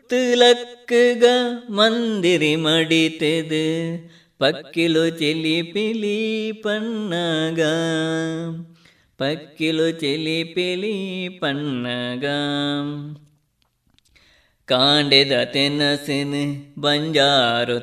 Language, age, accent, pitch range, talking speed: Kannada, 30-49, native, 150-195 Hz, 35 wpm